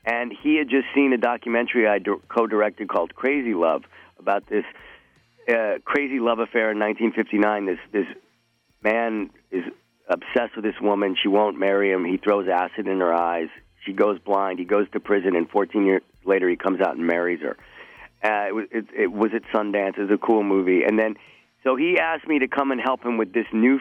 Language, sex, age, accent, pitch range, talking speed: English, male, 50-69, American, 100-120 Hz, 205 wpm